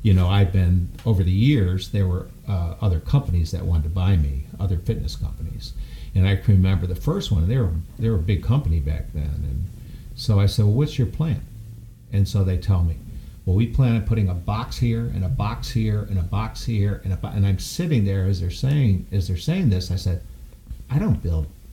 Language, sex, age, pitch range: English, male, 60-79, 85-105 Hz